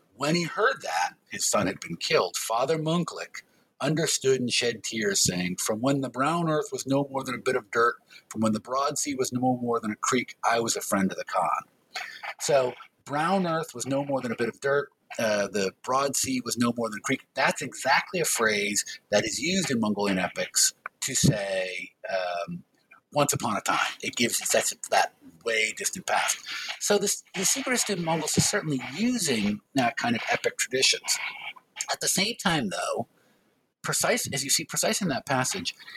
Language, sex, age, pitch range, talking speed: English, male, 50-69, 115-175 Hz, 200 wpm